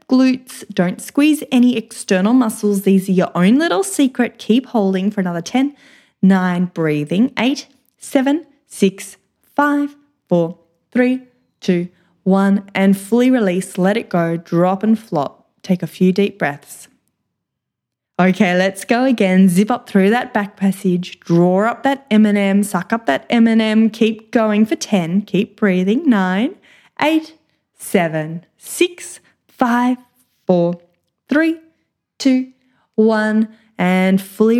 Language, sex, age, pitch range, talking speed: English, female, 10-29, 185-245 Hz, 130 wpm